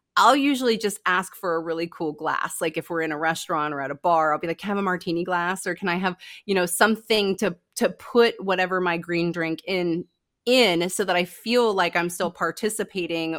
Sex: female